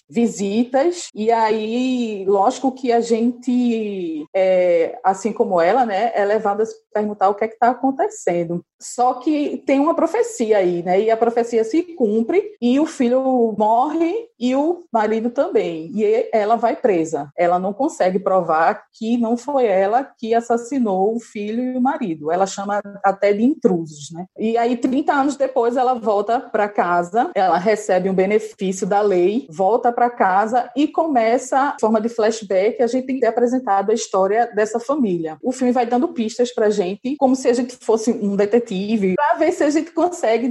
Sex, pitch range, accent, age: female, 205-260 Hz, Brazilian, 20-39